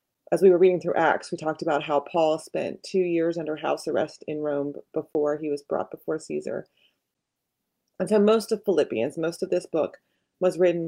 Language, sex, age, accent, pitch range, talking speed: English, female, 30-49, American, 155-195 Hz, 200 wpm